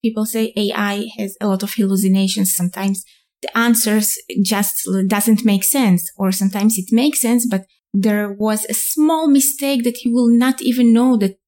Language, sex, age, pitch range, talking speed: English, female, 20-39, 200-255 Hz, 175 wpm